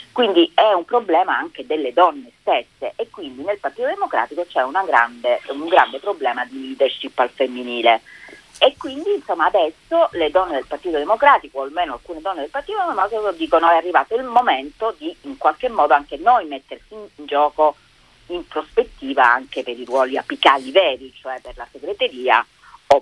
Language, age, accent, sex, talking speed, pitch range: Italian, 40-59, native, female, 170 wpm, 135-215 Hz